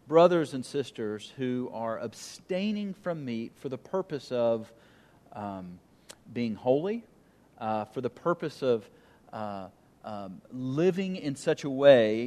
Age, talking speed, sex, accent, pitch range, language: 40-59, 130 wpm, male, American, 130-165 Hz, English